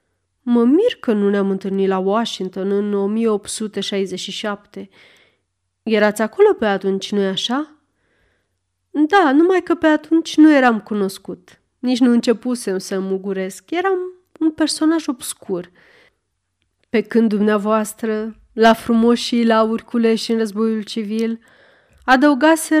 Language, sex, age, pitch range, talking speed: Romanian, female, 30-49, 200-270 Hz, 115 wpm